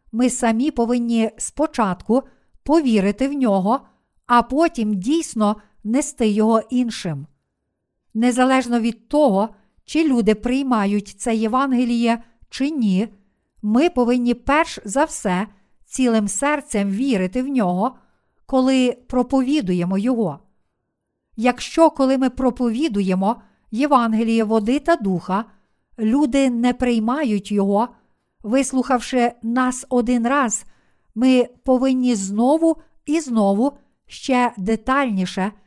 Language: Ukrainian